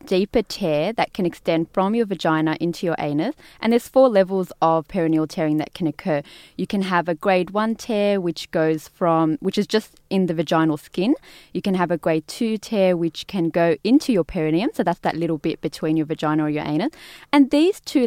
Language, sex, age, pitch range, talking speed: English, female, 20-39, 160-210 Hz, 215 wpm